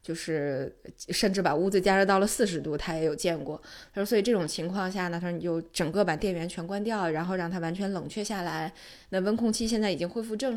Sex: female